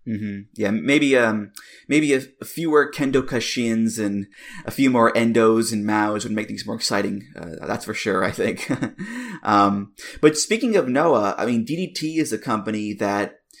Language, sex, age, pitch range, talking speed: English, male, 20-39, 105-125 Hz, 175 wpm